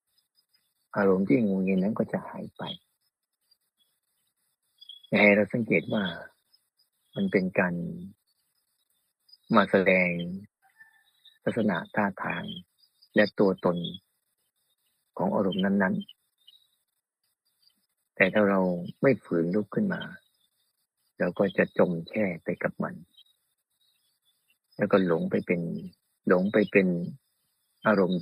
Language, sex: Thai, male